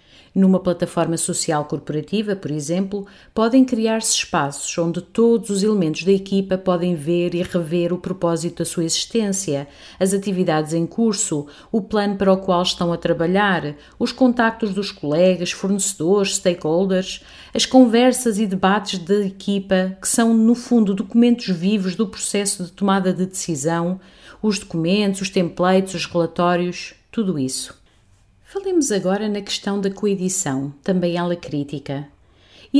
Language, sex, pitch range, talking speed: Portuguese, female, 170-205 Hz, 145 wpm